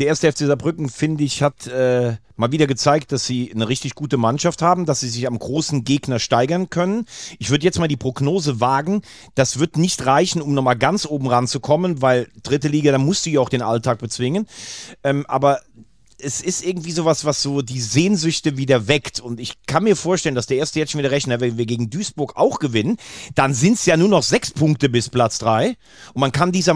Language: German